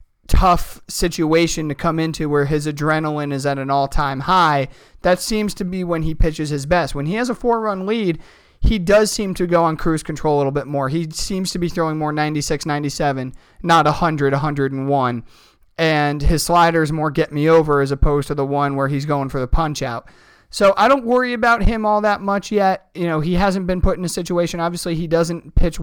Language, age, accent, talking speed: English, 30-49, American, 215 wpm